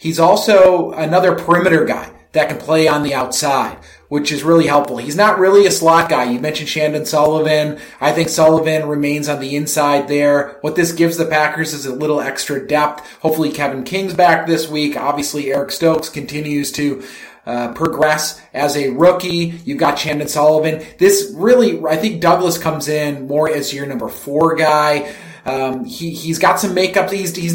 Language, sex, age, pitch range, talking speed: English, male, 30-49, 145-170 Hz, 185 wpm